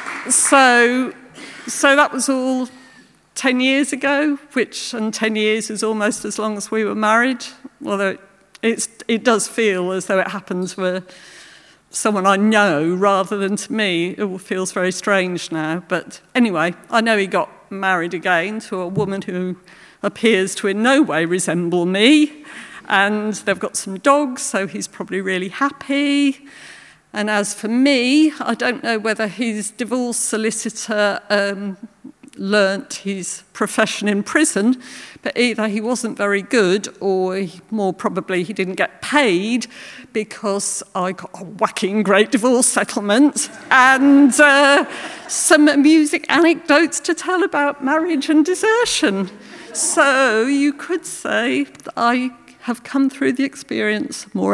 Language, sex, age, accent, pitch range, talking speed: English, female, 50-69, British, 195-270 Hz, 145 wpm